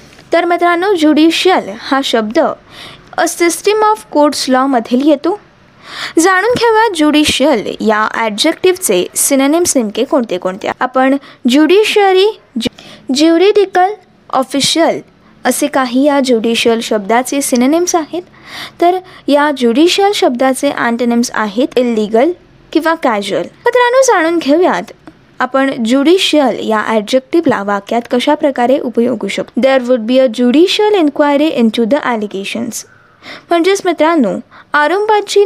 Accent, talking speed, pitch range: native, 105 wpm, 250-335 Hz